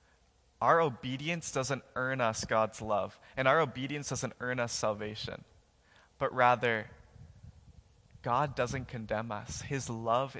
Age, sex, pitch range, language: 20-39, male, 110-135 Hz, English